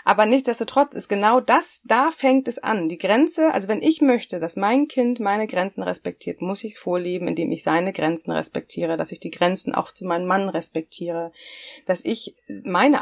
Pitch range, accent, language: 165-220 Hz, German, German